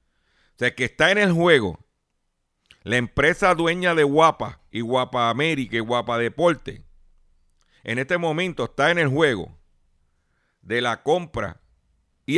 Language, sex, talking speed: Spanish, male, 140 wpm